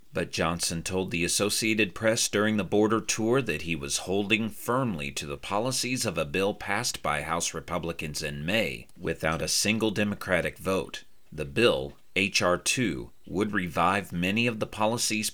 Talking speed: 160 wpm